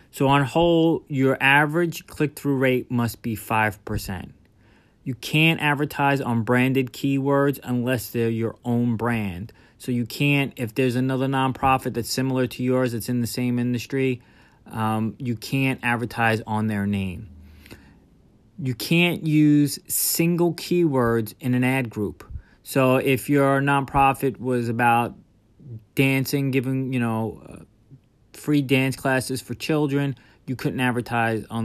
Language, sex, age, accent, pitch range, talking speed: English, male, 30-49, American, 115-140 Hz, 135 wpm